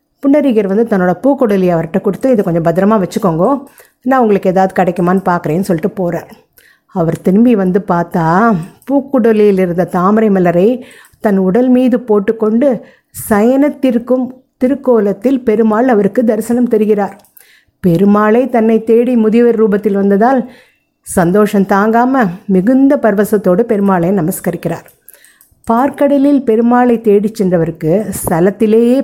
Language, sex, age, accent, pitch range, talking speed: Tamil, female, 50-69, native, 190-240 Hz, 105 wpm